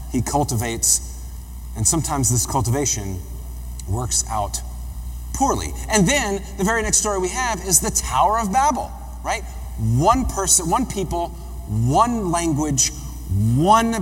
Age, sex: 30-49, male